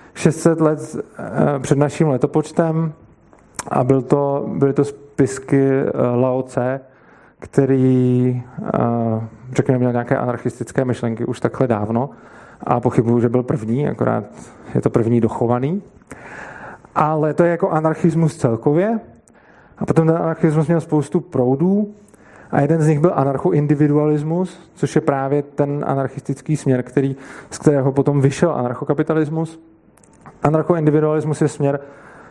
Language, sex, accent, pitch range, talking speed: Czech, male, native, 125-160 Hz, 120 wpm